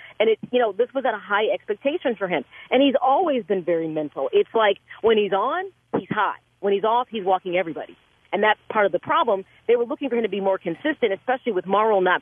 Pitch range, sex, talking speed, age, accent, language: 180-265 Hz, female, 245 wpm, 40-59, American, English